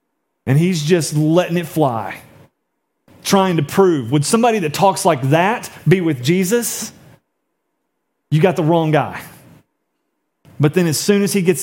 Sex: male